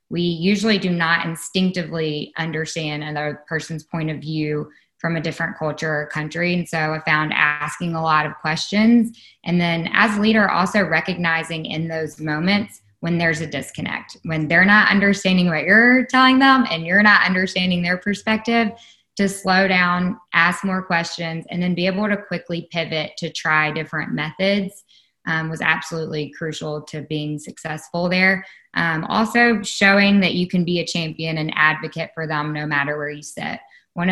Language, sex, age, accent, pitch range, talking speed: English, female, 20-39, American, 160-185 Hz, 170 wpm